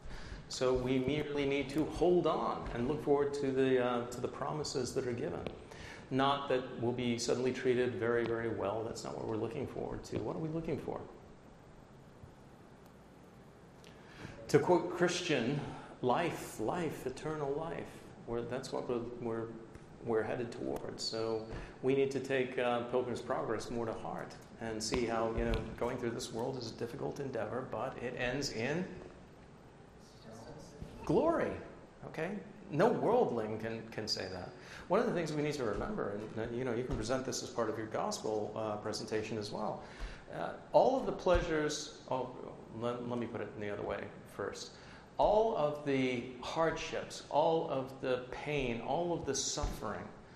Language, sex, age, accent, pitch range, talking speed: English, male, 40-59, American, 115-140 Hz, 170 wpm